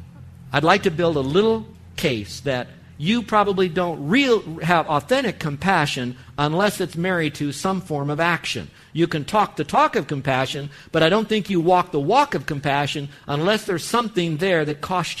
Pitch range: 145-180 Hz